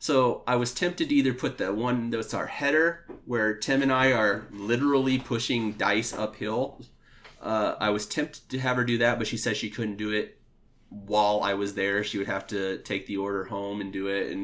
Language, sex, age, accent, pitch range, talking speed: English, male, 30-49, American, 100-115 Hz, 220 wpm